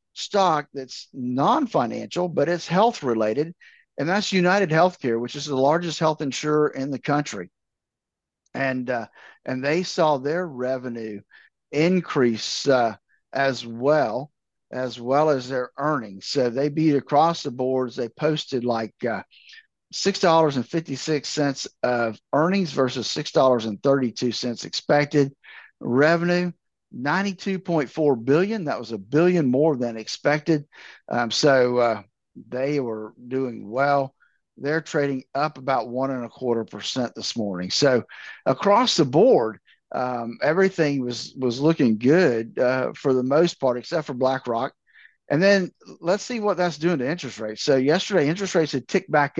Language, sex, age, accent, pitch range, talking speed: English, male, 50-69, American, 125-165 Hz, 145 wpm